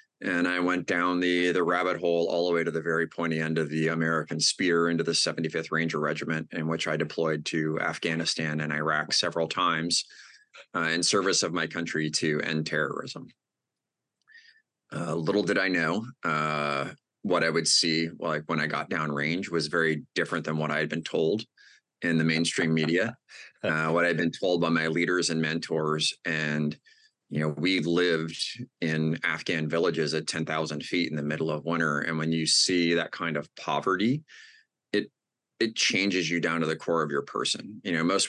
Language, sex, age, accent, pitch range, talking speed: English, male, 30-49, American, 80-85 Hz, 190 wpm